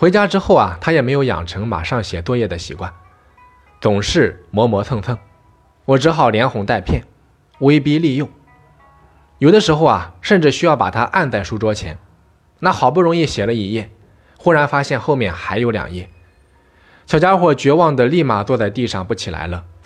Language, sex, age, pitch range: Chinese, male, 20-39, 90-130 Hz